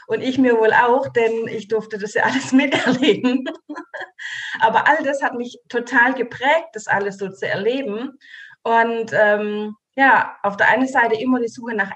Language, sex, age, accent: German, female, 30-49, German